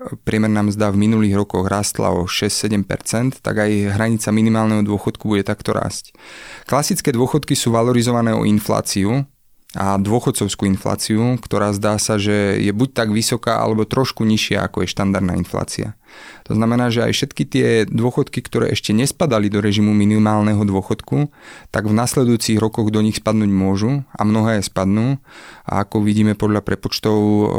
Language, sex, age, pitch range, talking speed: Slovak, male, 30-49, 105-115 Hz, 155 wpm